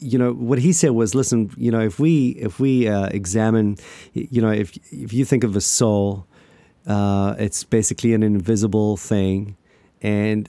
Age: 30-49